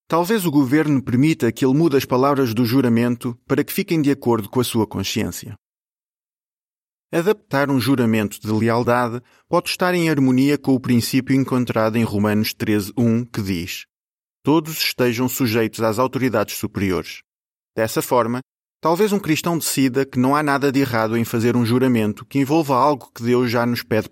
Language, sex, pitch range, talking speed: Portuguese, male, 120-145 Hz, 170 wpm